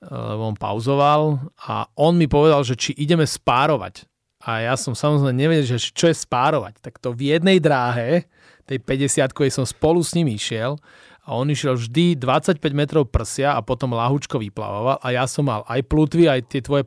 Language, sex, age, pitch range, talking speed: Slovak, male, 30-49, 120-150 Hz, 185 wpm